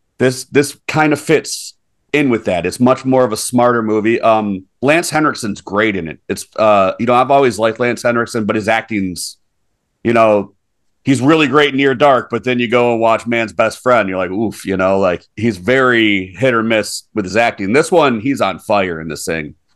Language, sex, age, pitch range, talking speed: English, male, 40-59, 95-130 Hz, 220 wpm